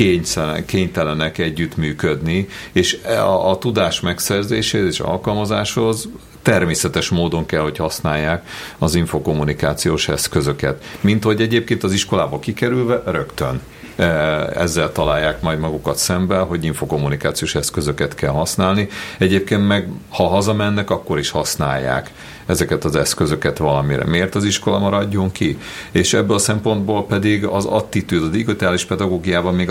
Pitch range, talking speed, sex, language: 80-100 Hz, 125 wpm, male, Hungarian